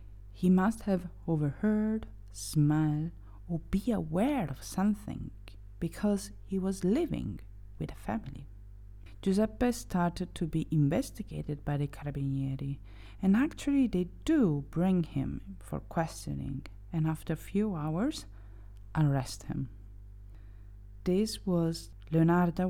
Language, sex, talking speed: English, female, 115 wpm